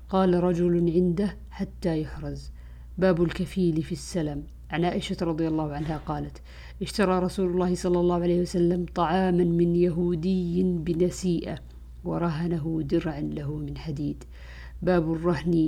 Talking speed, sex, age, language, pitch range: 125 wpm, female, 50-69, Arabic, 155-180 Hz